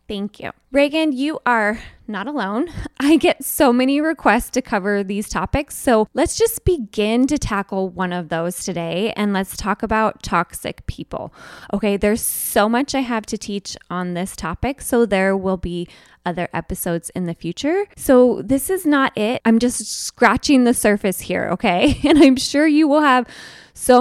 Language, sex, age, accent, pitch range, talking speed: English, female, 20-39, American, 200-275 Hz, 175 wpm